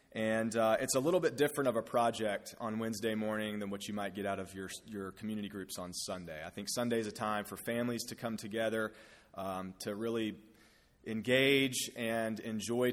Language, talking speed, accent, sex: English, 200 wpm, American, male